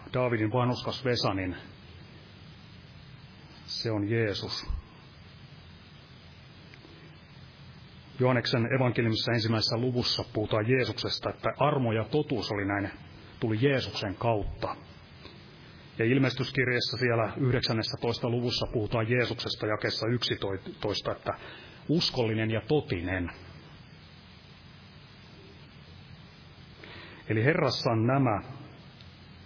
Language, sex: Finnish, male